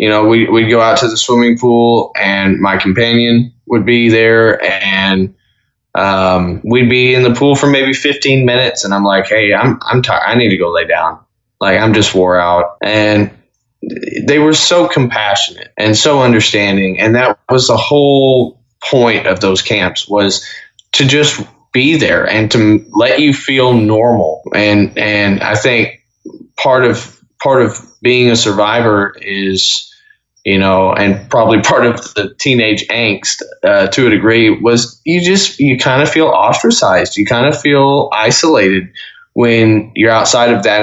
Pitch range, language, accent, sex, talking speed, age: 100-125 Hz, English, American, male, 170 wpm, 20-39